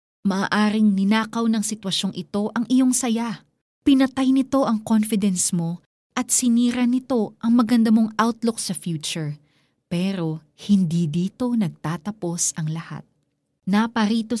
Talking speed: 120 wpm